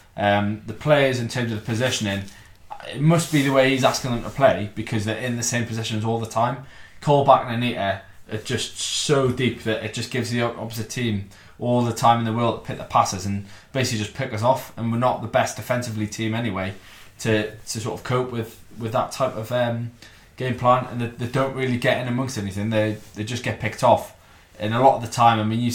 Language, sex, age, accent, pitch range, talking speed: English, male, 20-39, British, 110-125 Hz, 240 wpm